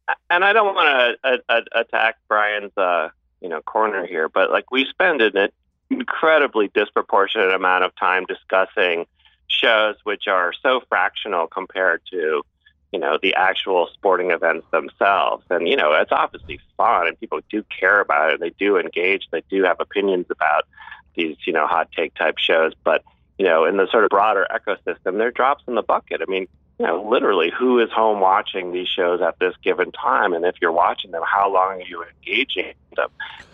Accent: American